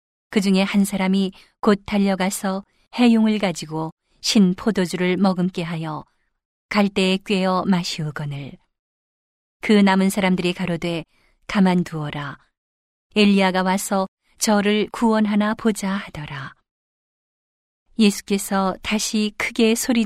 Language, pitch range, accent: Korean, 170-210 Hz, native